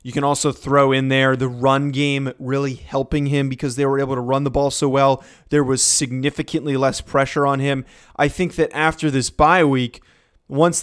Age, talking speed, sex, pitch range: 20-39, 205 wpm, male, 140-165 Hz